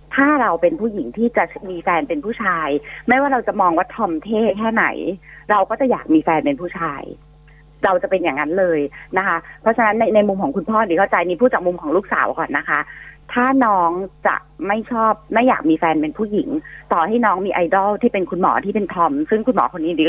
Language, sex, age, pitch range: Thai, female, 30-49, 170-230 Hz